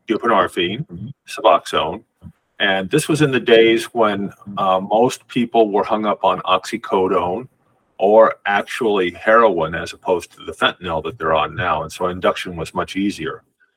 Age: 40-59